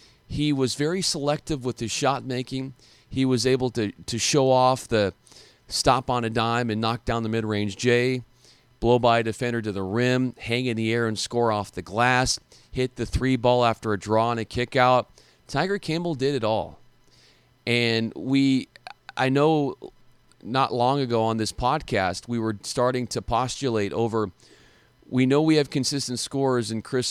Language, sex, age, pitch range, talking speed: English, male, 40-59, 110-130 Hz, 180 wpm